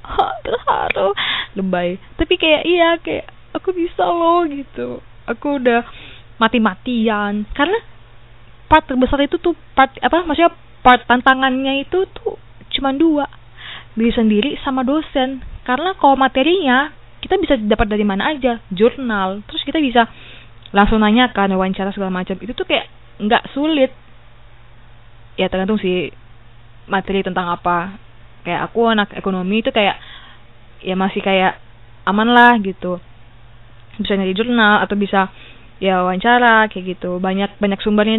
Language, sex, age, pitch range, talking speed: Indonesian, female, 20-39, 185-265 Hz, 135 wpm